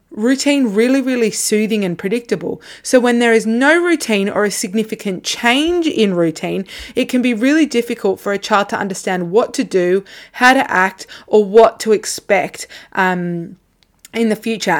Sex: female